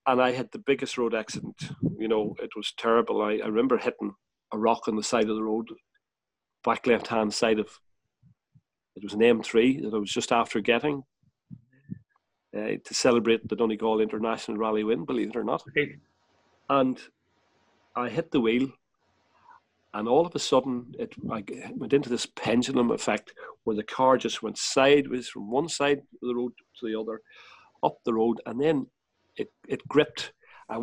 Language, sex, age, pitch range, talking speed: English, male, 40-59, 115-135 Hz, 180 wpm